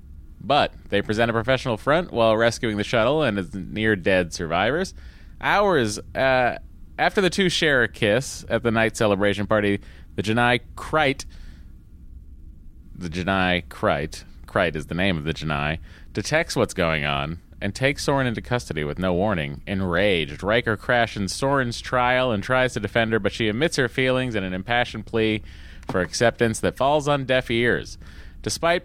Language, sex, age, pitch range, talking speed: English, male, 30-49, 85-130 Hz, 165 wpm